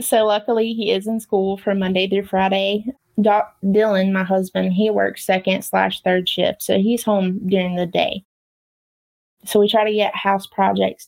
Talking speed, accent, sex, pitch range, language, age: 175 wpm, American, female, 185-210 Hz, English, 20-39